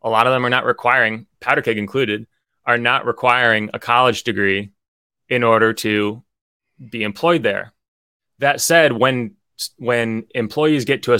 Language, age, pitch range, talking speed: English, 20-39, 100-130 Hz, 160 wpm